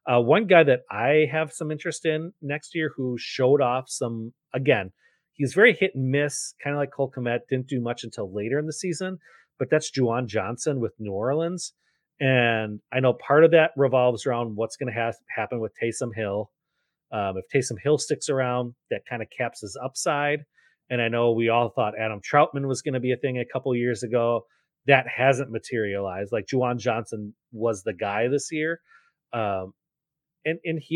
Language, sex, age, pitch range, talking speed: English, male, 30-49, 115-150 Hz, 200 wpm